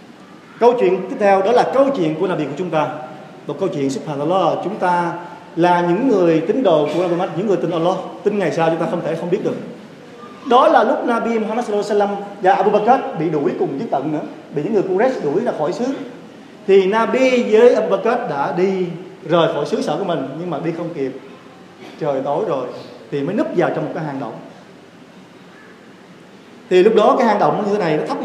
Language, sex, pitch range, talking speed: Vietnamese, male, 165-220 Hz, 225 wpm